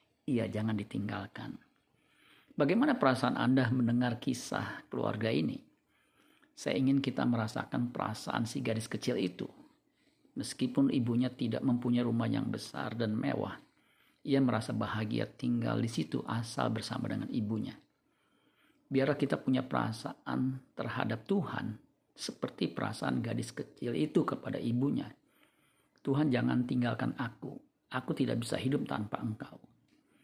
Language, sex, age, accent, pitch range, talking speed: Indonesian, male, 50-69, native, 115-135 Hz, 120 wpm